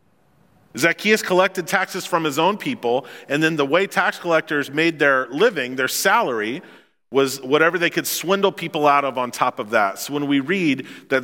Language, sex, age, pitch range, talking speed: English, male, 40-59, 140-185 Hz, 185 wpm